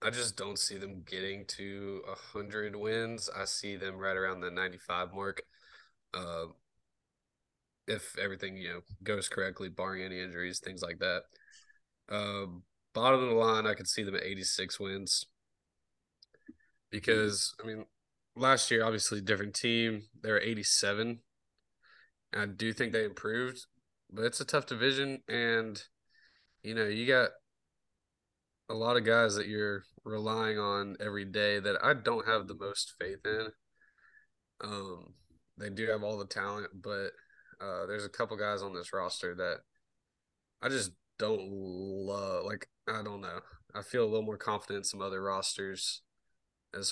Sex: male